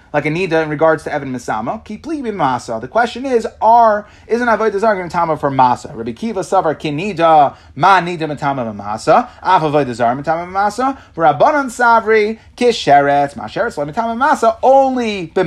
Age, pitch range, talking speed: 30-49, 145-205 Hz, 165 wpm